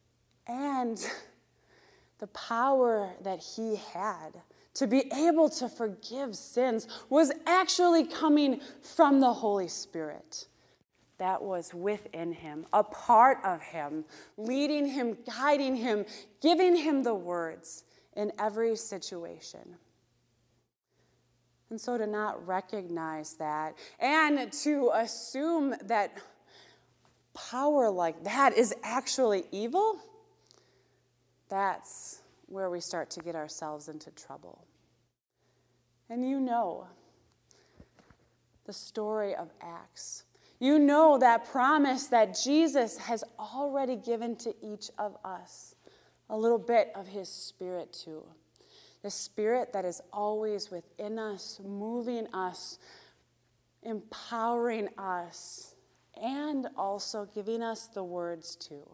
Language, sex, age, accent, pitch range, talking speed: English, female, 20-39, American, 175-260 Hz, 110 wpm